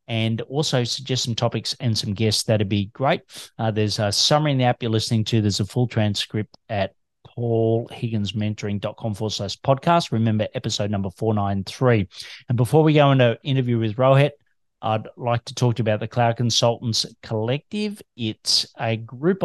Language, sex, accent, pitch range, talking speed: English, male, Australian, 110-130 Hz, 175 wpm